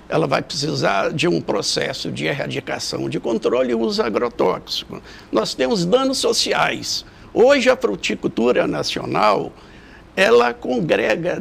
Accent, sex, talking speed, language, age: Brazilian, male, 115 wpm, Portuguese, 60-79